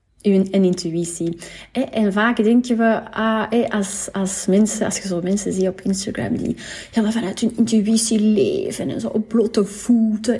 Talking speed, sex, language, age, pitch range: 180 wpm, female, Dutch, 30-49, 195-230 Hz